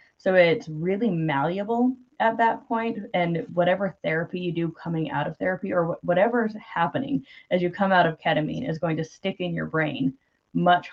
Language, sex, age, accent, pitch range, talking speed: English, female, 20-39, American, 155-180 Hz, 180 wpm